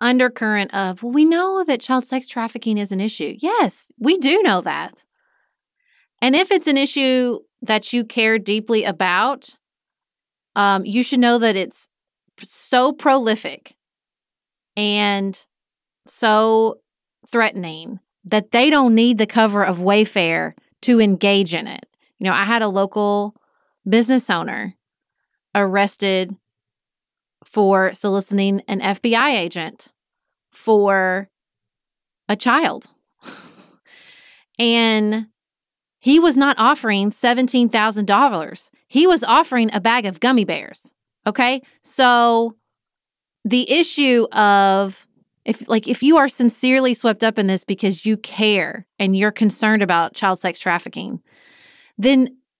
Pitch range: 200-255 Hz